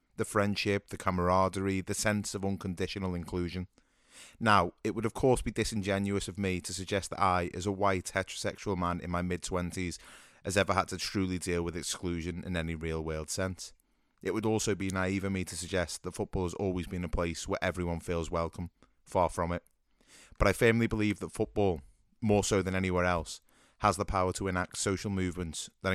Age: 30-49